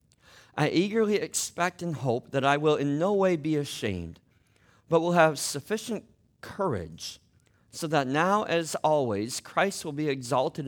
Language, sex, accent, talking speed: English, male, American, 150 wpm